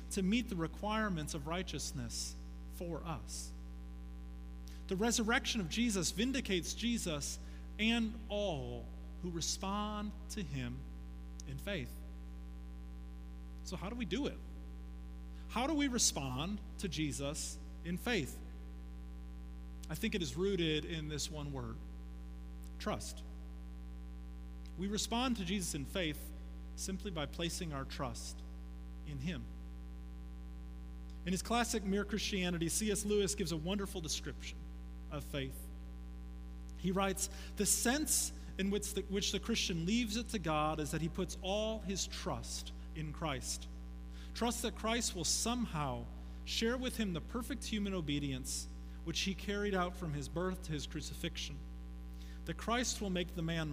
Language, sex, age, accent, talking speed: English, male, 30-49, American, 135 wpm